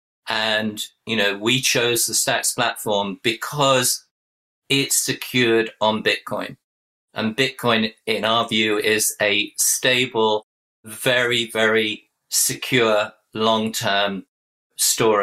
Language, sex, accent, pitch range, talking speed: English, male, British, 105-125 Hz, 105 wpm